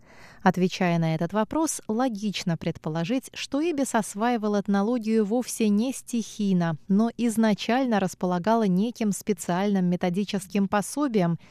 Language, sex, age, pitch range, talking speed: Russian, female, 20-39, 180-235 Hz, 105 wpm